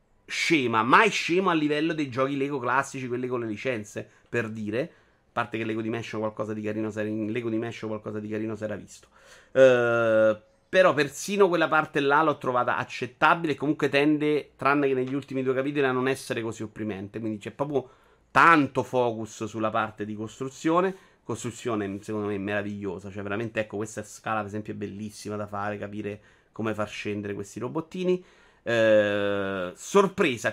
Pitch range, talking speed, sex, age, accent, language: 110-150 Hz, 160 wpm, male, 30-49, native, Italian